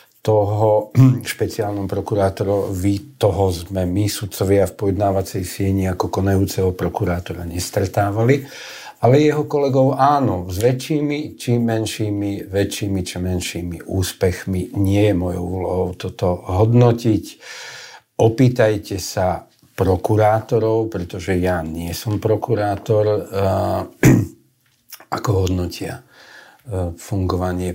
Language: Slovak